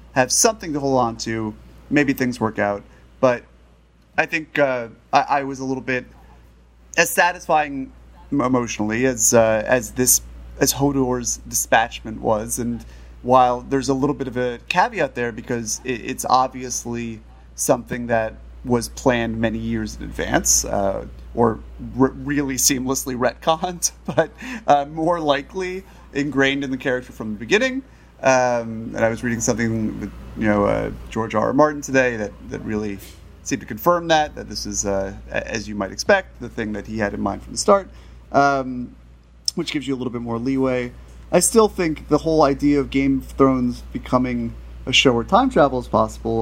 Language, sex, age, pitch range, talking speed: English, male, 30-49, 110-145 Hz, 175 wpm